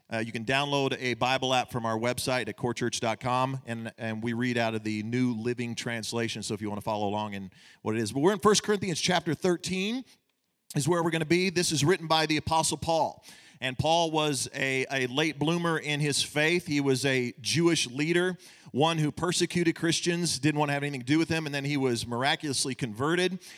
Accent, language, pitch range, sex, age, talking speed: American, English, 130-165 Hz, male, 40-59, 220 wpm